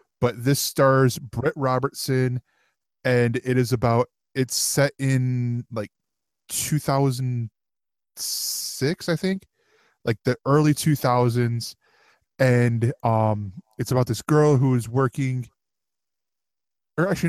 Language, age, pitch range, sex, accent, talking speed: English, 20-39, 115-140 Hz, male, American, 110 wpm